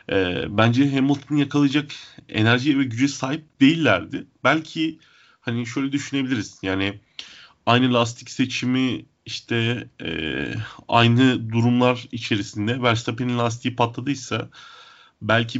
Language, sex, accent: Turkish, male, native